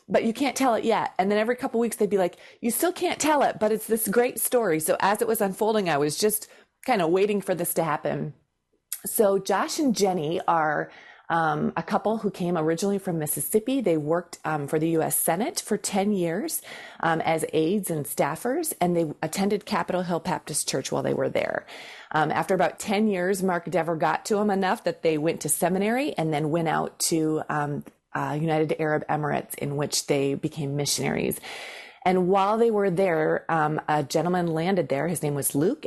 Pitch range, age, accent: 155-200 Hz, 30-49, American